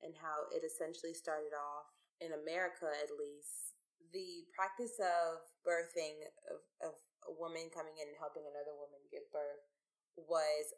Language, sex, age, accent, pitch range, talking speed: English, female, 20-39, American, 145-205 Hz, 150 wpm